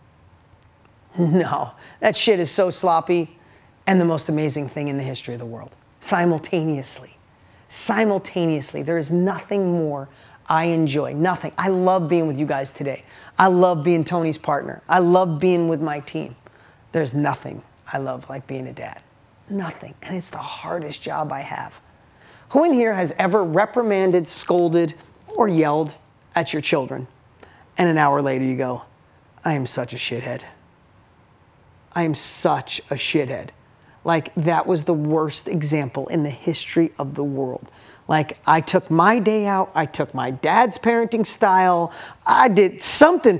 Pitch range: 150-195 Hz